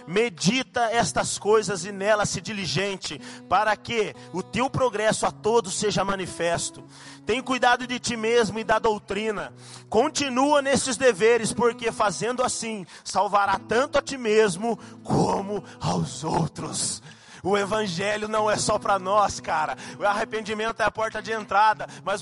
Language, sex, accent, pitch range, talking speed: Portuguese, male, Brazilian, 210-265 Hz, 145 wpm